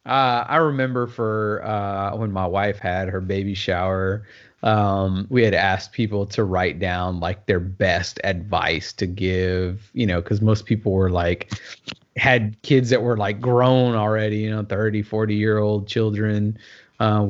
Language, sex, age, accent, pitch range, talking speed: English, male, 30-49, American, 95-115 Hz, 165 wpm